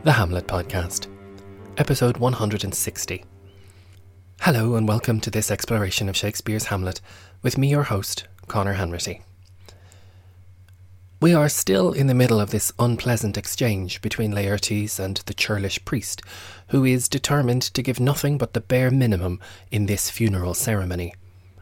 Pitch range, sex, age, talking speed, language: 95-120 Hz, male, 20-39, 140 wpm, English